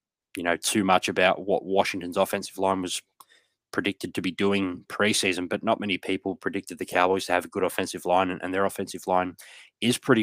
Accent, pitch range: Australian, 95-100 Hz